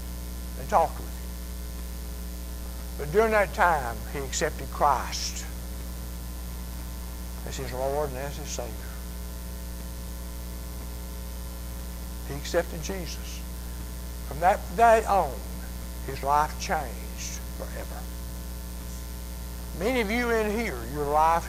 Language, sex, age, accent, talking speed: English, male, 60-79, American, 100 wpm